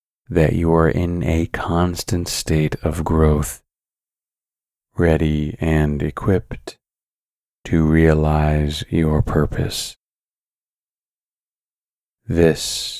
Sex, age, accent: male, 30-49, American